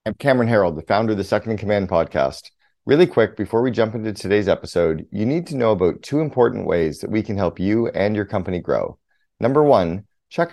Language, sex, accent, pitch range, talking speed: English, male, American, 95-115 Hz, 220 wpm